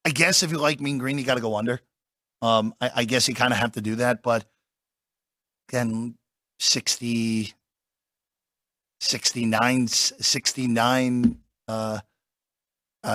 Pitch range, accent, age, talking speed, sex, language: 115-135 Hz, American, 40-59, 130 wpm, male, English